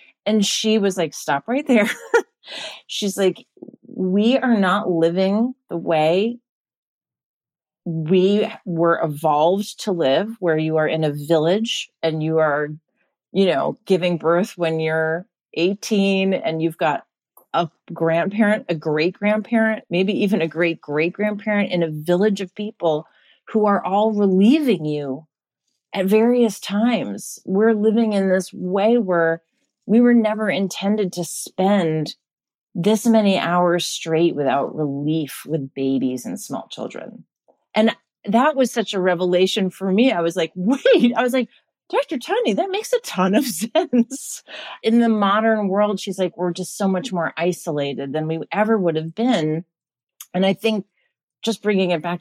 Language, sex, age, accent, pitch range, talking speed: English, female, 30-49, American, 165-215 Hz, 155 wpm